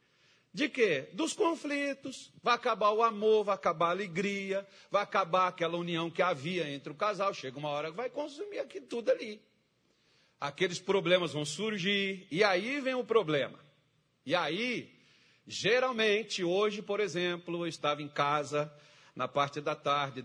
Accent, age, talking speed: Brazilian, 40-59, 155 wpm